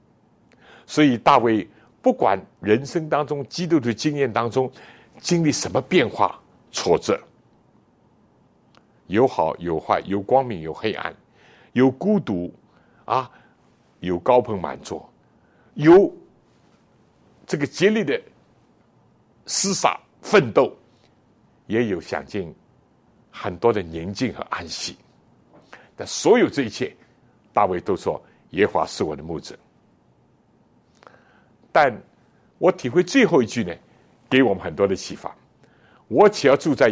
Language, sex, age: Chinese, male, 60-79